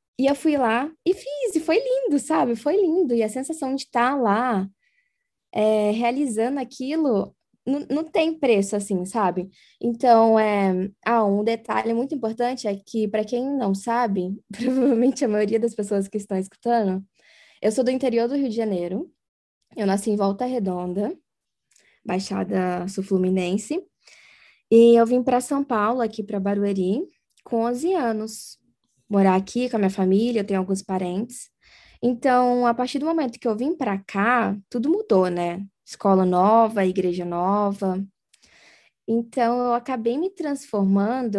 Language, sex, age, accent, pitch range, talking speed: Portuguese, female, 10-29, Brazilian, 200-260 Hz, 150 wpm